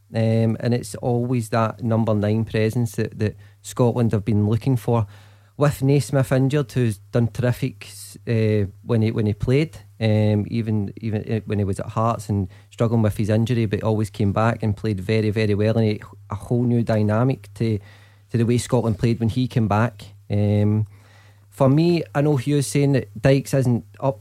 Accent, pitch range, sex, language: British, 105-125 Hz, male, English